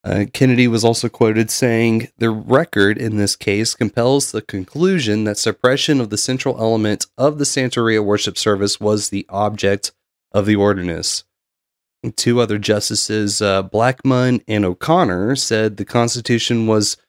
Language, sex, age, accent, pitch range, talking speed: English, male, 30-49, American, 95-115 Hz, 150 wpm